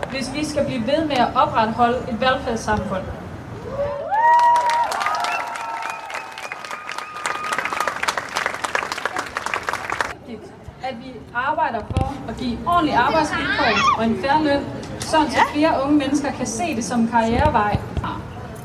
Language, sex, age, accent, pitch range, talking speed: Danish, female, 30-49, native, 240-315 Hz, 105 wpm